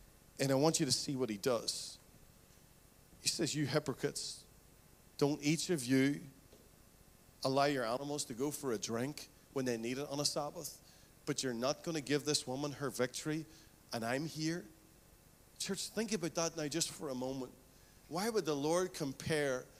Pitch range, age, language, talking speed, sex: 135-175 Hz, 40-59, English, 175 wpm, male